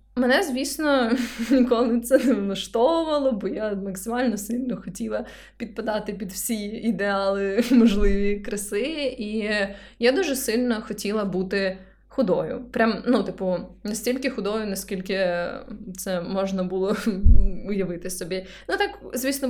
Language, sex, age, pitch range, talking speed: Ukrainian, female, 20-39, 190-245 Hz, 115 wpm